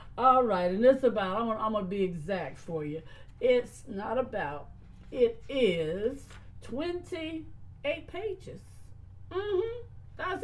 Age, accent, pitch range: 50-69, American, 155-235 Hz